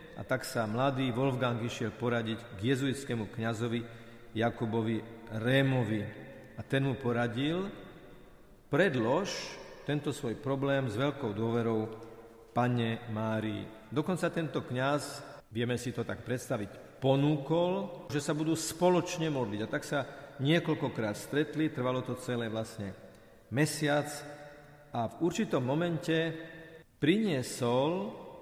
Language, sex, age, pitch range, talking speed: Slovak, male, 50-69, 115-155 Hz, 115 wpm